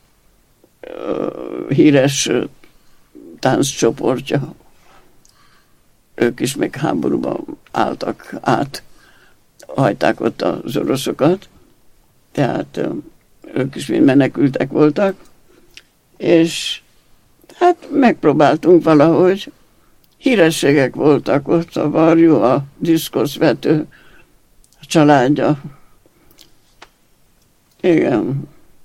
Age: 60-79